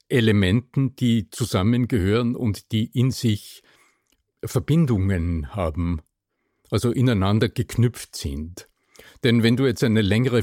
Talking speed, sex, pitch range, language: 110 wpm, male, 95-120 Hz, German